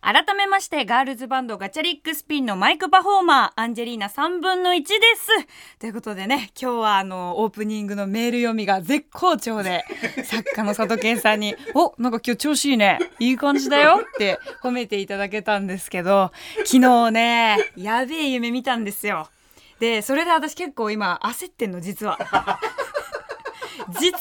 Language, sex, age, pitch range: Japanese, female, 20-39, 230-325 Hz